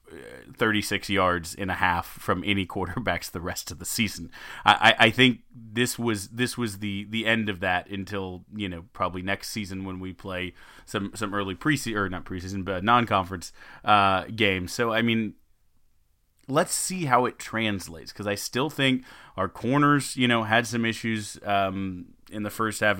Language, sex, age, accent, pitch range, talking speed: English, male, 30-49, American, 90-115 Hz, 185 wpm